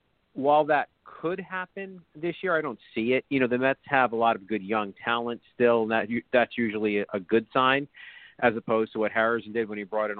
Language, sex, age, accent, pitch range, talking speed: English, male, 50-69, American, 105-125 Hz, 225 wpm